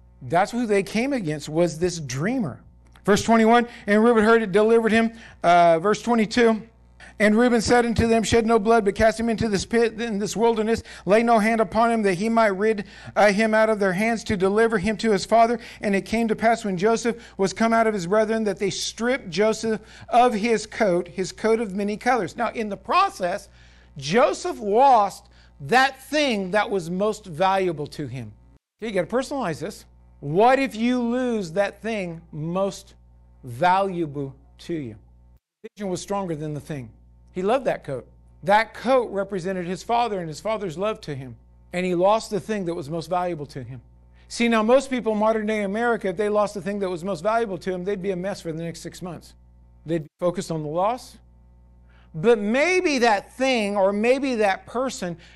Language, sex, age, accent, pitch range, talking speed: English, male, 50-69, American, 175-225 Hz, 200 wpm